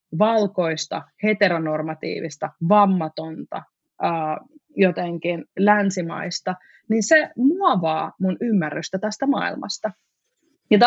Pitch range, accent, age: 170-215 Hz, native, 20-39